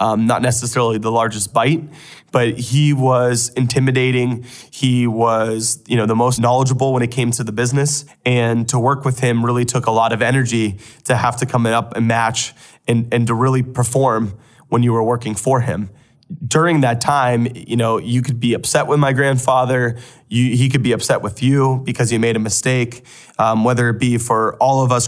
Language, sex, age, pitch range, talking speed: English, male, 20-39, 115-135 Hz, 200 wpm